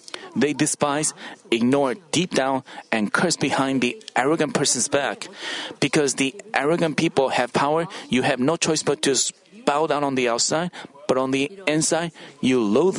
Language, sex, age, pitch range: Korean, male, 30-49, 135-185 Hz